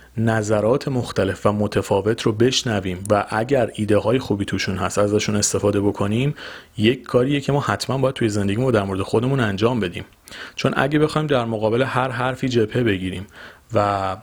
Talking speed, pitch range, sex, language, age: 175 wpm, 110-140 Hz, male, Persian, 40-59